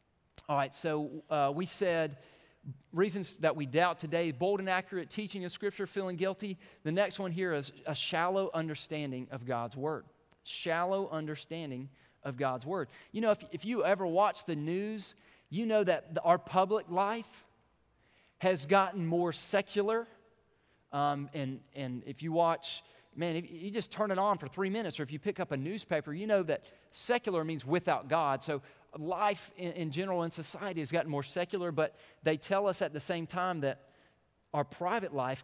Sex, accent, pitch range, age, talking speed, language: male, American, 140-185 Hz, 30-49, 180 wpm, English